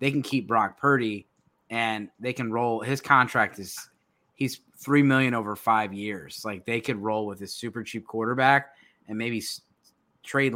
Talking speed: 170 wpm